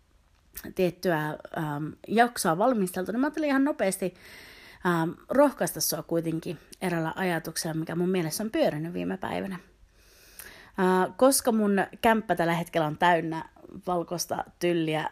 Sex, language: female, Finnish